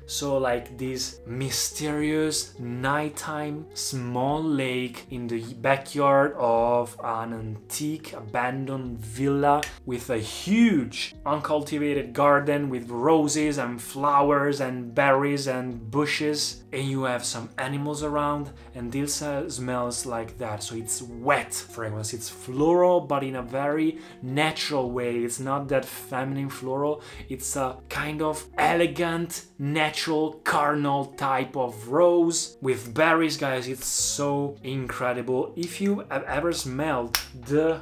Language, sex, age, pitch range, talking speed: Italian, male, 20-39, 125-150 Hz, 125 wpm